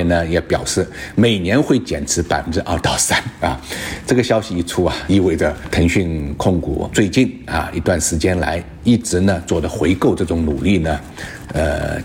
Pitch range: 80-110 Hz